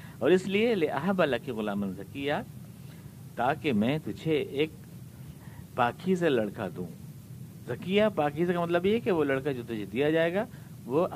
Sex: male